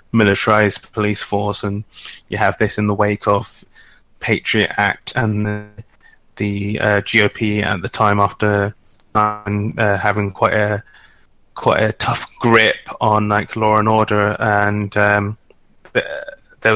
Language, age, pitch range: English, 20-39, 105-115 Hz